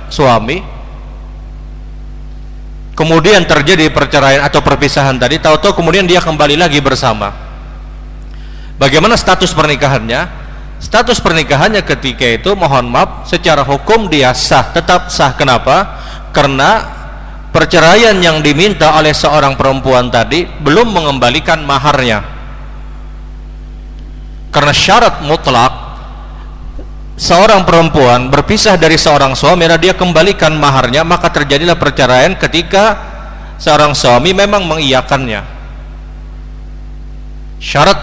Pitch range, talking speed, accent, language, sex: 120-165 Hz, 95 wpm, native, Indonesian, male